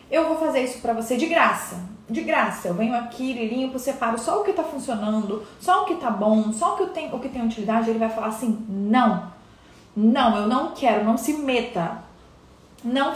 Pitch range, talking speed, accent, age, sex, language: 215-265 Hz, 200 wpm, Brazilian, 20-39, female, Portuguese